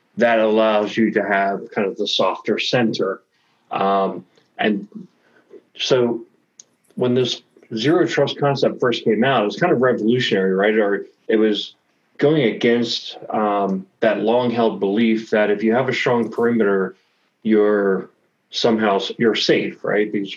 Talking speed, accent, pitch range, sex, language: 150 wpm, American, 100-115 Hz, male, English